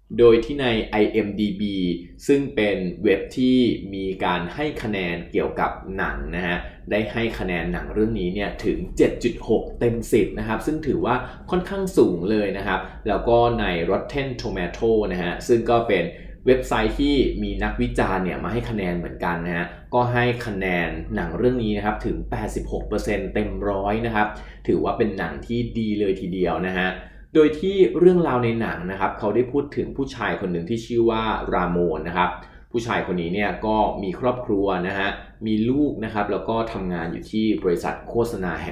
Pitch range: 90-120 Hz